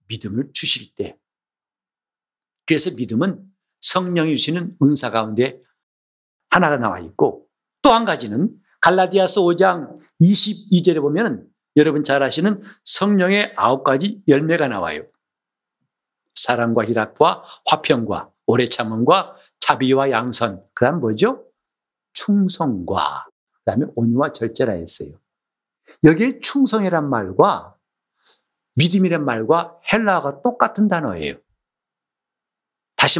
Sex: male